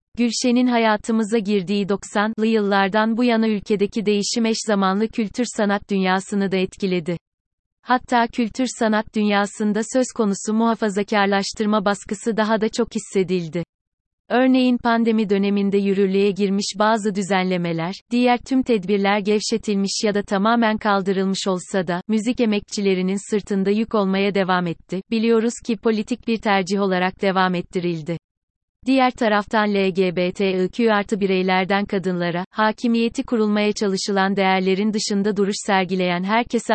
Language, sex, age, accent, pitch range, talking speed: Turkish, female, 30-49, native, 190-220 Hz, 120 wpm